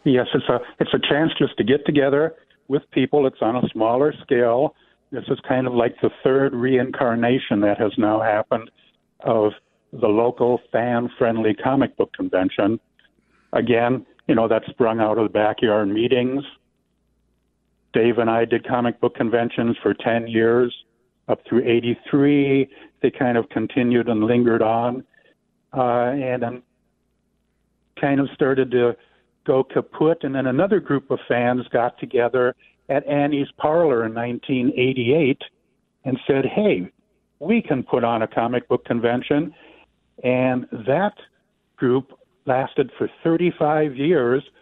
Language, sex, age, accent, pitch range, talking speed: English, male, 60-79, American, 120-140 Hz, 140 wpm